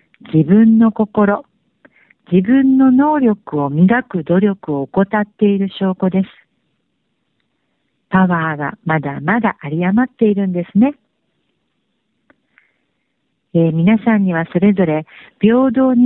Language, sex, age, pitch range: Japanese, female, 50-69, 175-225 Hz